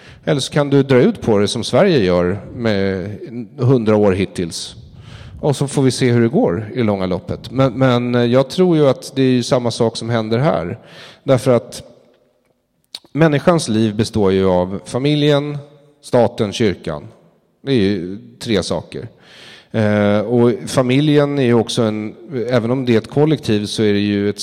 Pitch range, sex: 95-130 Hz, male